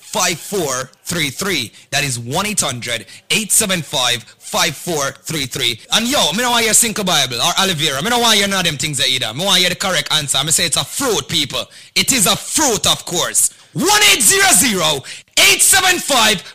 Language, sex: English, male